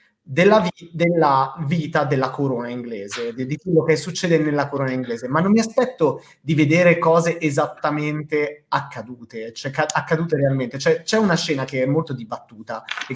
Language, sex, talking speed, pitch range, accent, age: Italian, male, 150 wpm, 135-165 Hz, native, 30-49